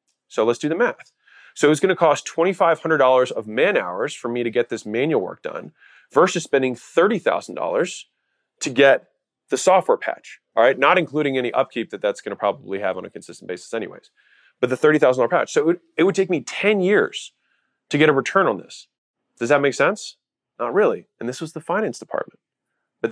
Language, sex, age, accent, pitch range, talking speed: English, male, 30-49, American, 125-185 Hz, 205 wpm